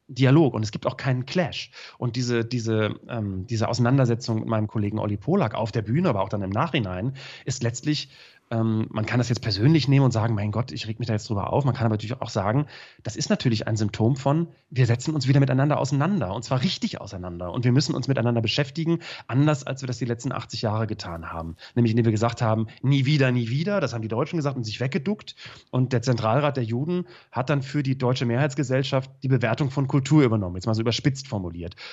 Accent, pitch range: German, 105-130 Hz